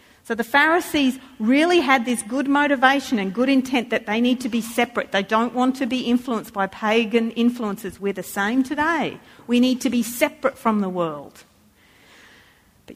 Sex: female